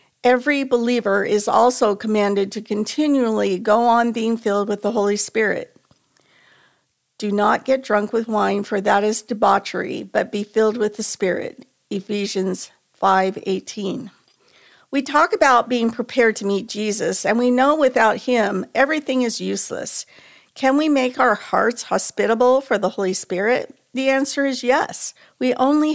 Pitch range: 205-250 Hz